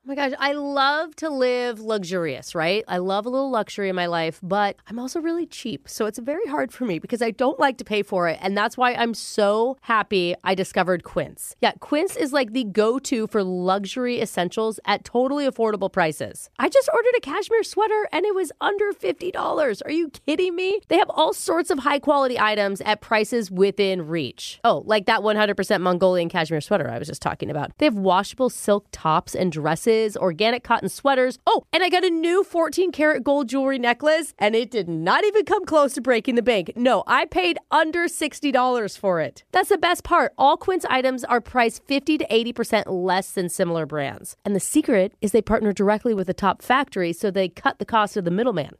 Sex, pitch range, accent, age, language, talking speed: female, 200-295 Hz, American, 30-49, English, 210 wpm